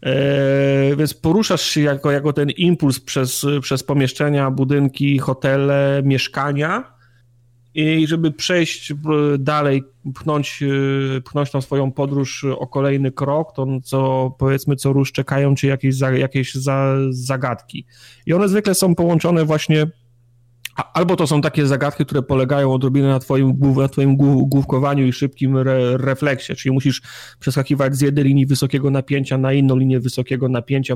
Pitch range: 130-140 Hz